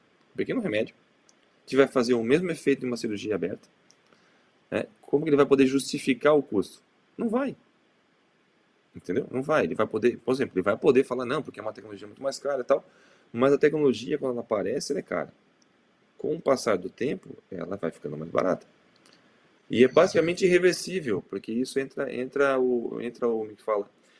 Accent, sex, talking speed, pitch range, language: Brazilian, male, 190 wpm, 115-140 Hz, Portuguese